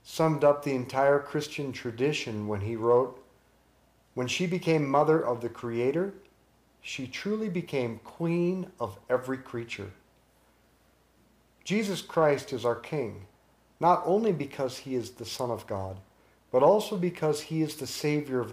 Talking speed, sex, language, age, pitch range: 145 wpm, male, English, 50-69, 120-160 Hz